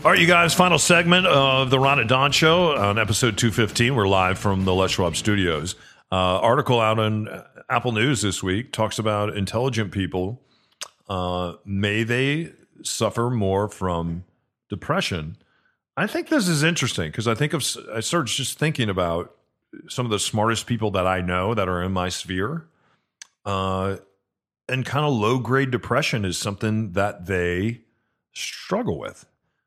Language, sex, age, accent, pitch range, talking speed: English, male, 40-59, American, 95-120 Hz, 160 wpm